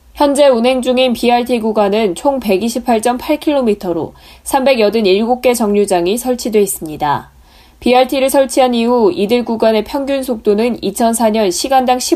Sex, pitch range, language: female, 200-255 Hz, Korean